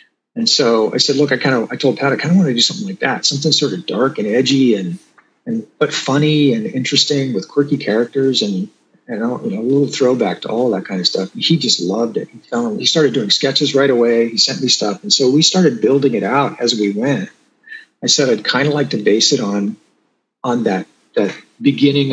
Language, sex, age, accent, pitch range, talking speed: English, male, 40-59, American, 105-150 Hz, 240 wpm